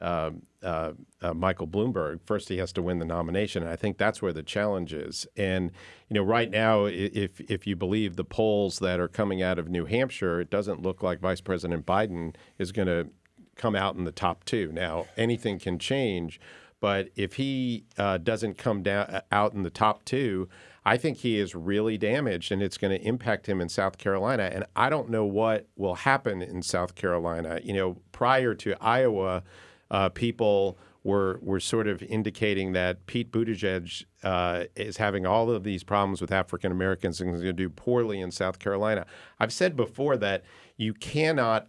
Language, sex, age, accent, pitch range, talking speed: English, male, 50-69, American, 90-110 Hz, 195 wpm